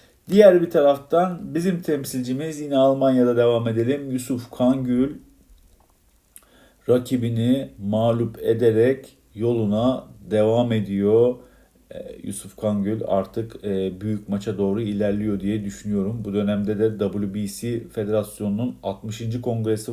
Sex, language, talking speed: male, Turkish, 105 wpm